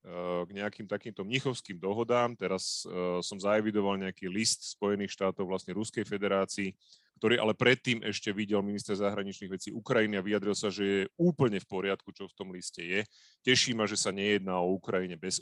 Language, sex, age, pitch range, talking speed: Slovak, male, 30-49, 100-120 Hz, 175 wpm